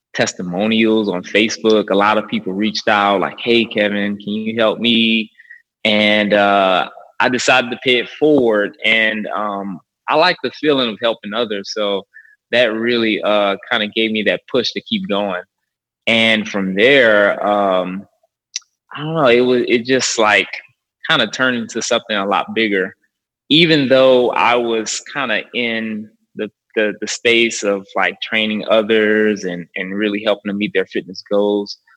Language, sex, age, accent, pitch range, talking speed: English, male, 20-39, American, 100-115 Hz, 165 wpm